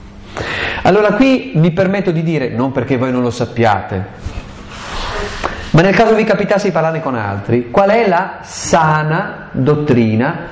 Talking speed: 150 wpm